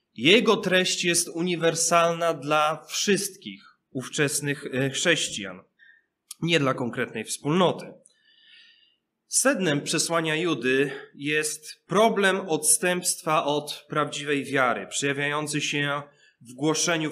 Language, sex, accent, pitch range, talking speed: Polish, male, native, 145-180 Hz, 90 wpm